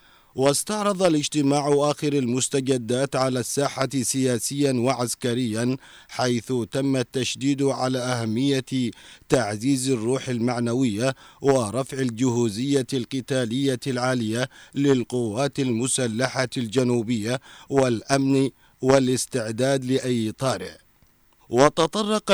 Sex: male